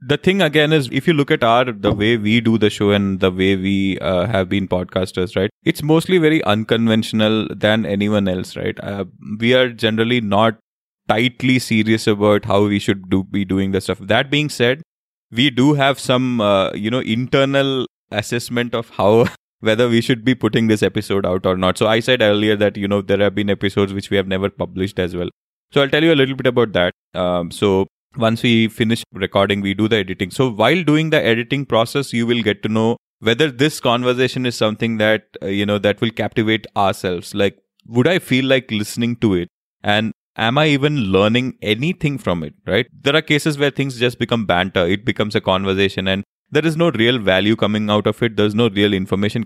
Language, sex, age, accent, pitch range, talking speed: English, male, 20-39, Indian, 100-130 Hz, 210 wpm